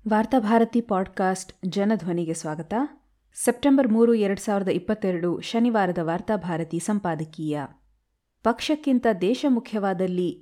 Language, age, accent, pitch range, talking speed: Kannada, 20-39, native, 170-230 Hz, 85 wpm